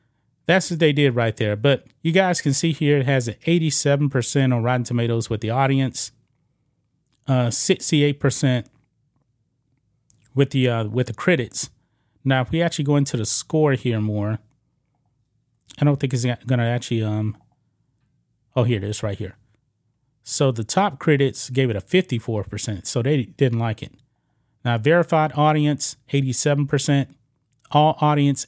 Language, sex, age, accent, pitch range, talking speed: English, male, 30-49, American, 120-145 Hz, 155 wpm